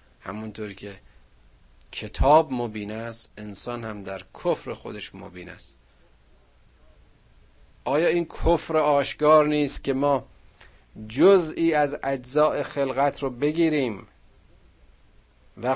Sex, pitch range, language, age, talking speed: male, 95-145 Hz, Persian, 50-69, 100 wpm